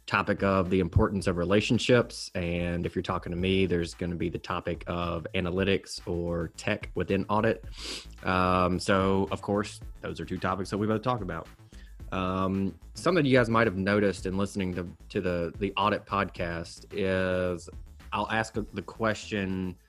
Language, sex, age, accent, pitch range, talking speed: English, male, 20-39, American, 90-100 Hz, 170 wpm